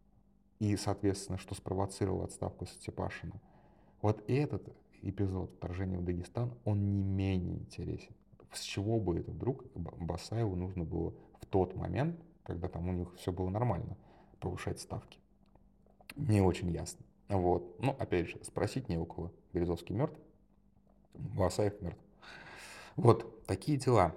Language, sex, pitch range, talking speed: Russian, male, 85-110 Hz, 135 wpm